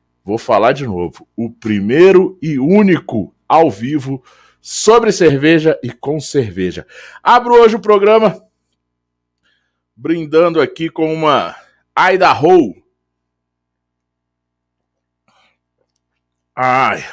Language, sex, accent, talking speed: Portuguese, male, Brazilian, 90 wpm